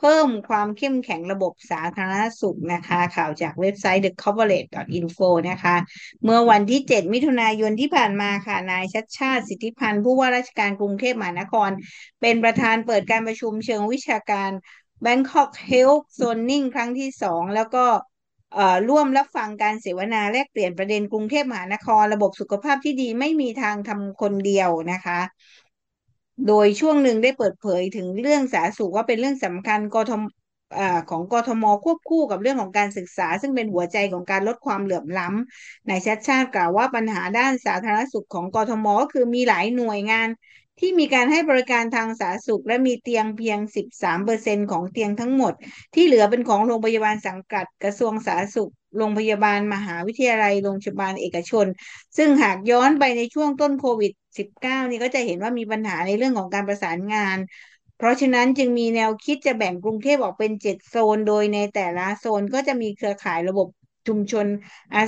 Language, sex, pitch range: English, female, 200-245 Hz